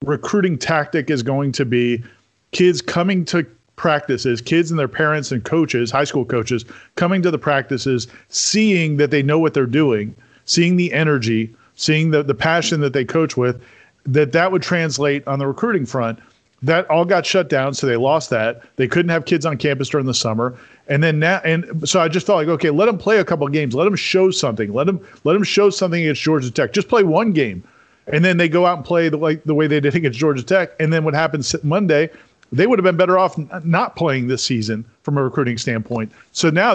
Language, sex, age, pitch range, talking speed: English, male, 40-59, 135-170 Hz, 220 wpm